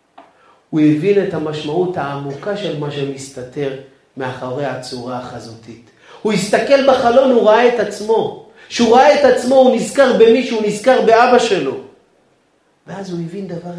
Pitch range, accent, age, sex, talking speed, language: 175-255 Hz, native, 40-59, male, 145 wpm, Hebrew